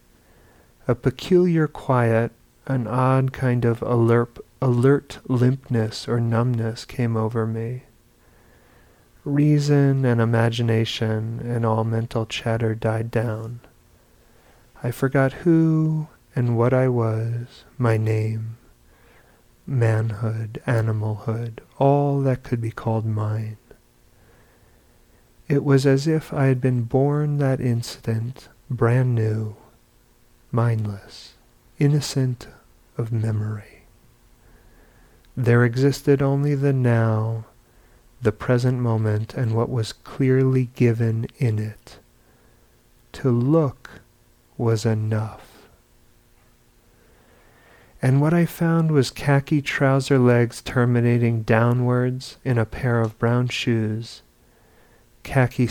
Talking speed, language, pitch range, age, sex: 100 wpm, English, 110-130 Hz, 40-59, male